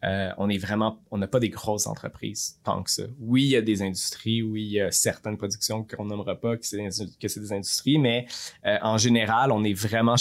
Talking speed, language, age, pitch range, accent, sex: 240 wpm, French, 20-39, 95-110 Hz, Canadian, male